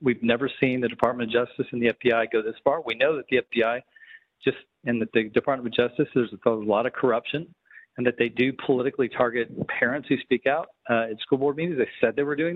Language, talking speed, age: English, 235 wpm, 40-59